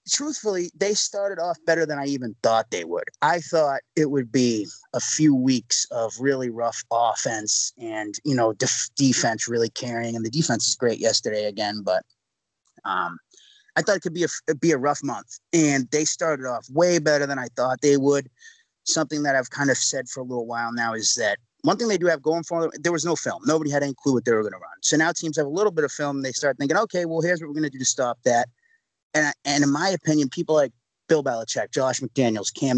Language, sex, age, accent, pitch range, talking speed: English, male, 30-49, American, 125-165 Hz, 240 wpm